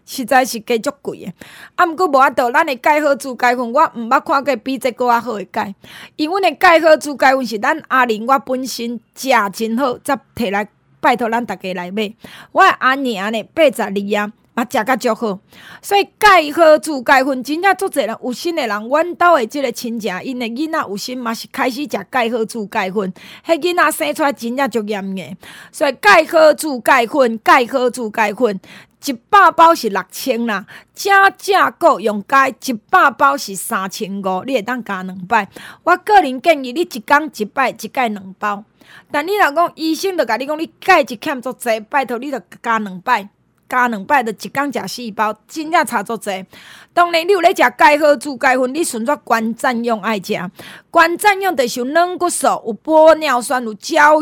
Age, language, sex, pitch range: 20-39, Chinese, female, 225-310 Hz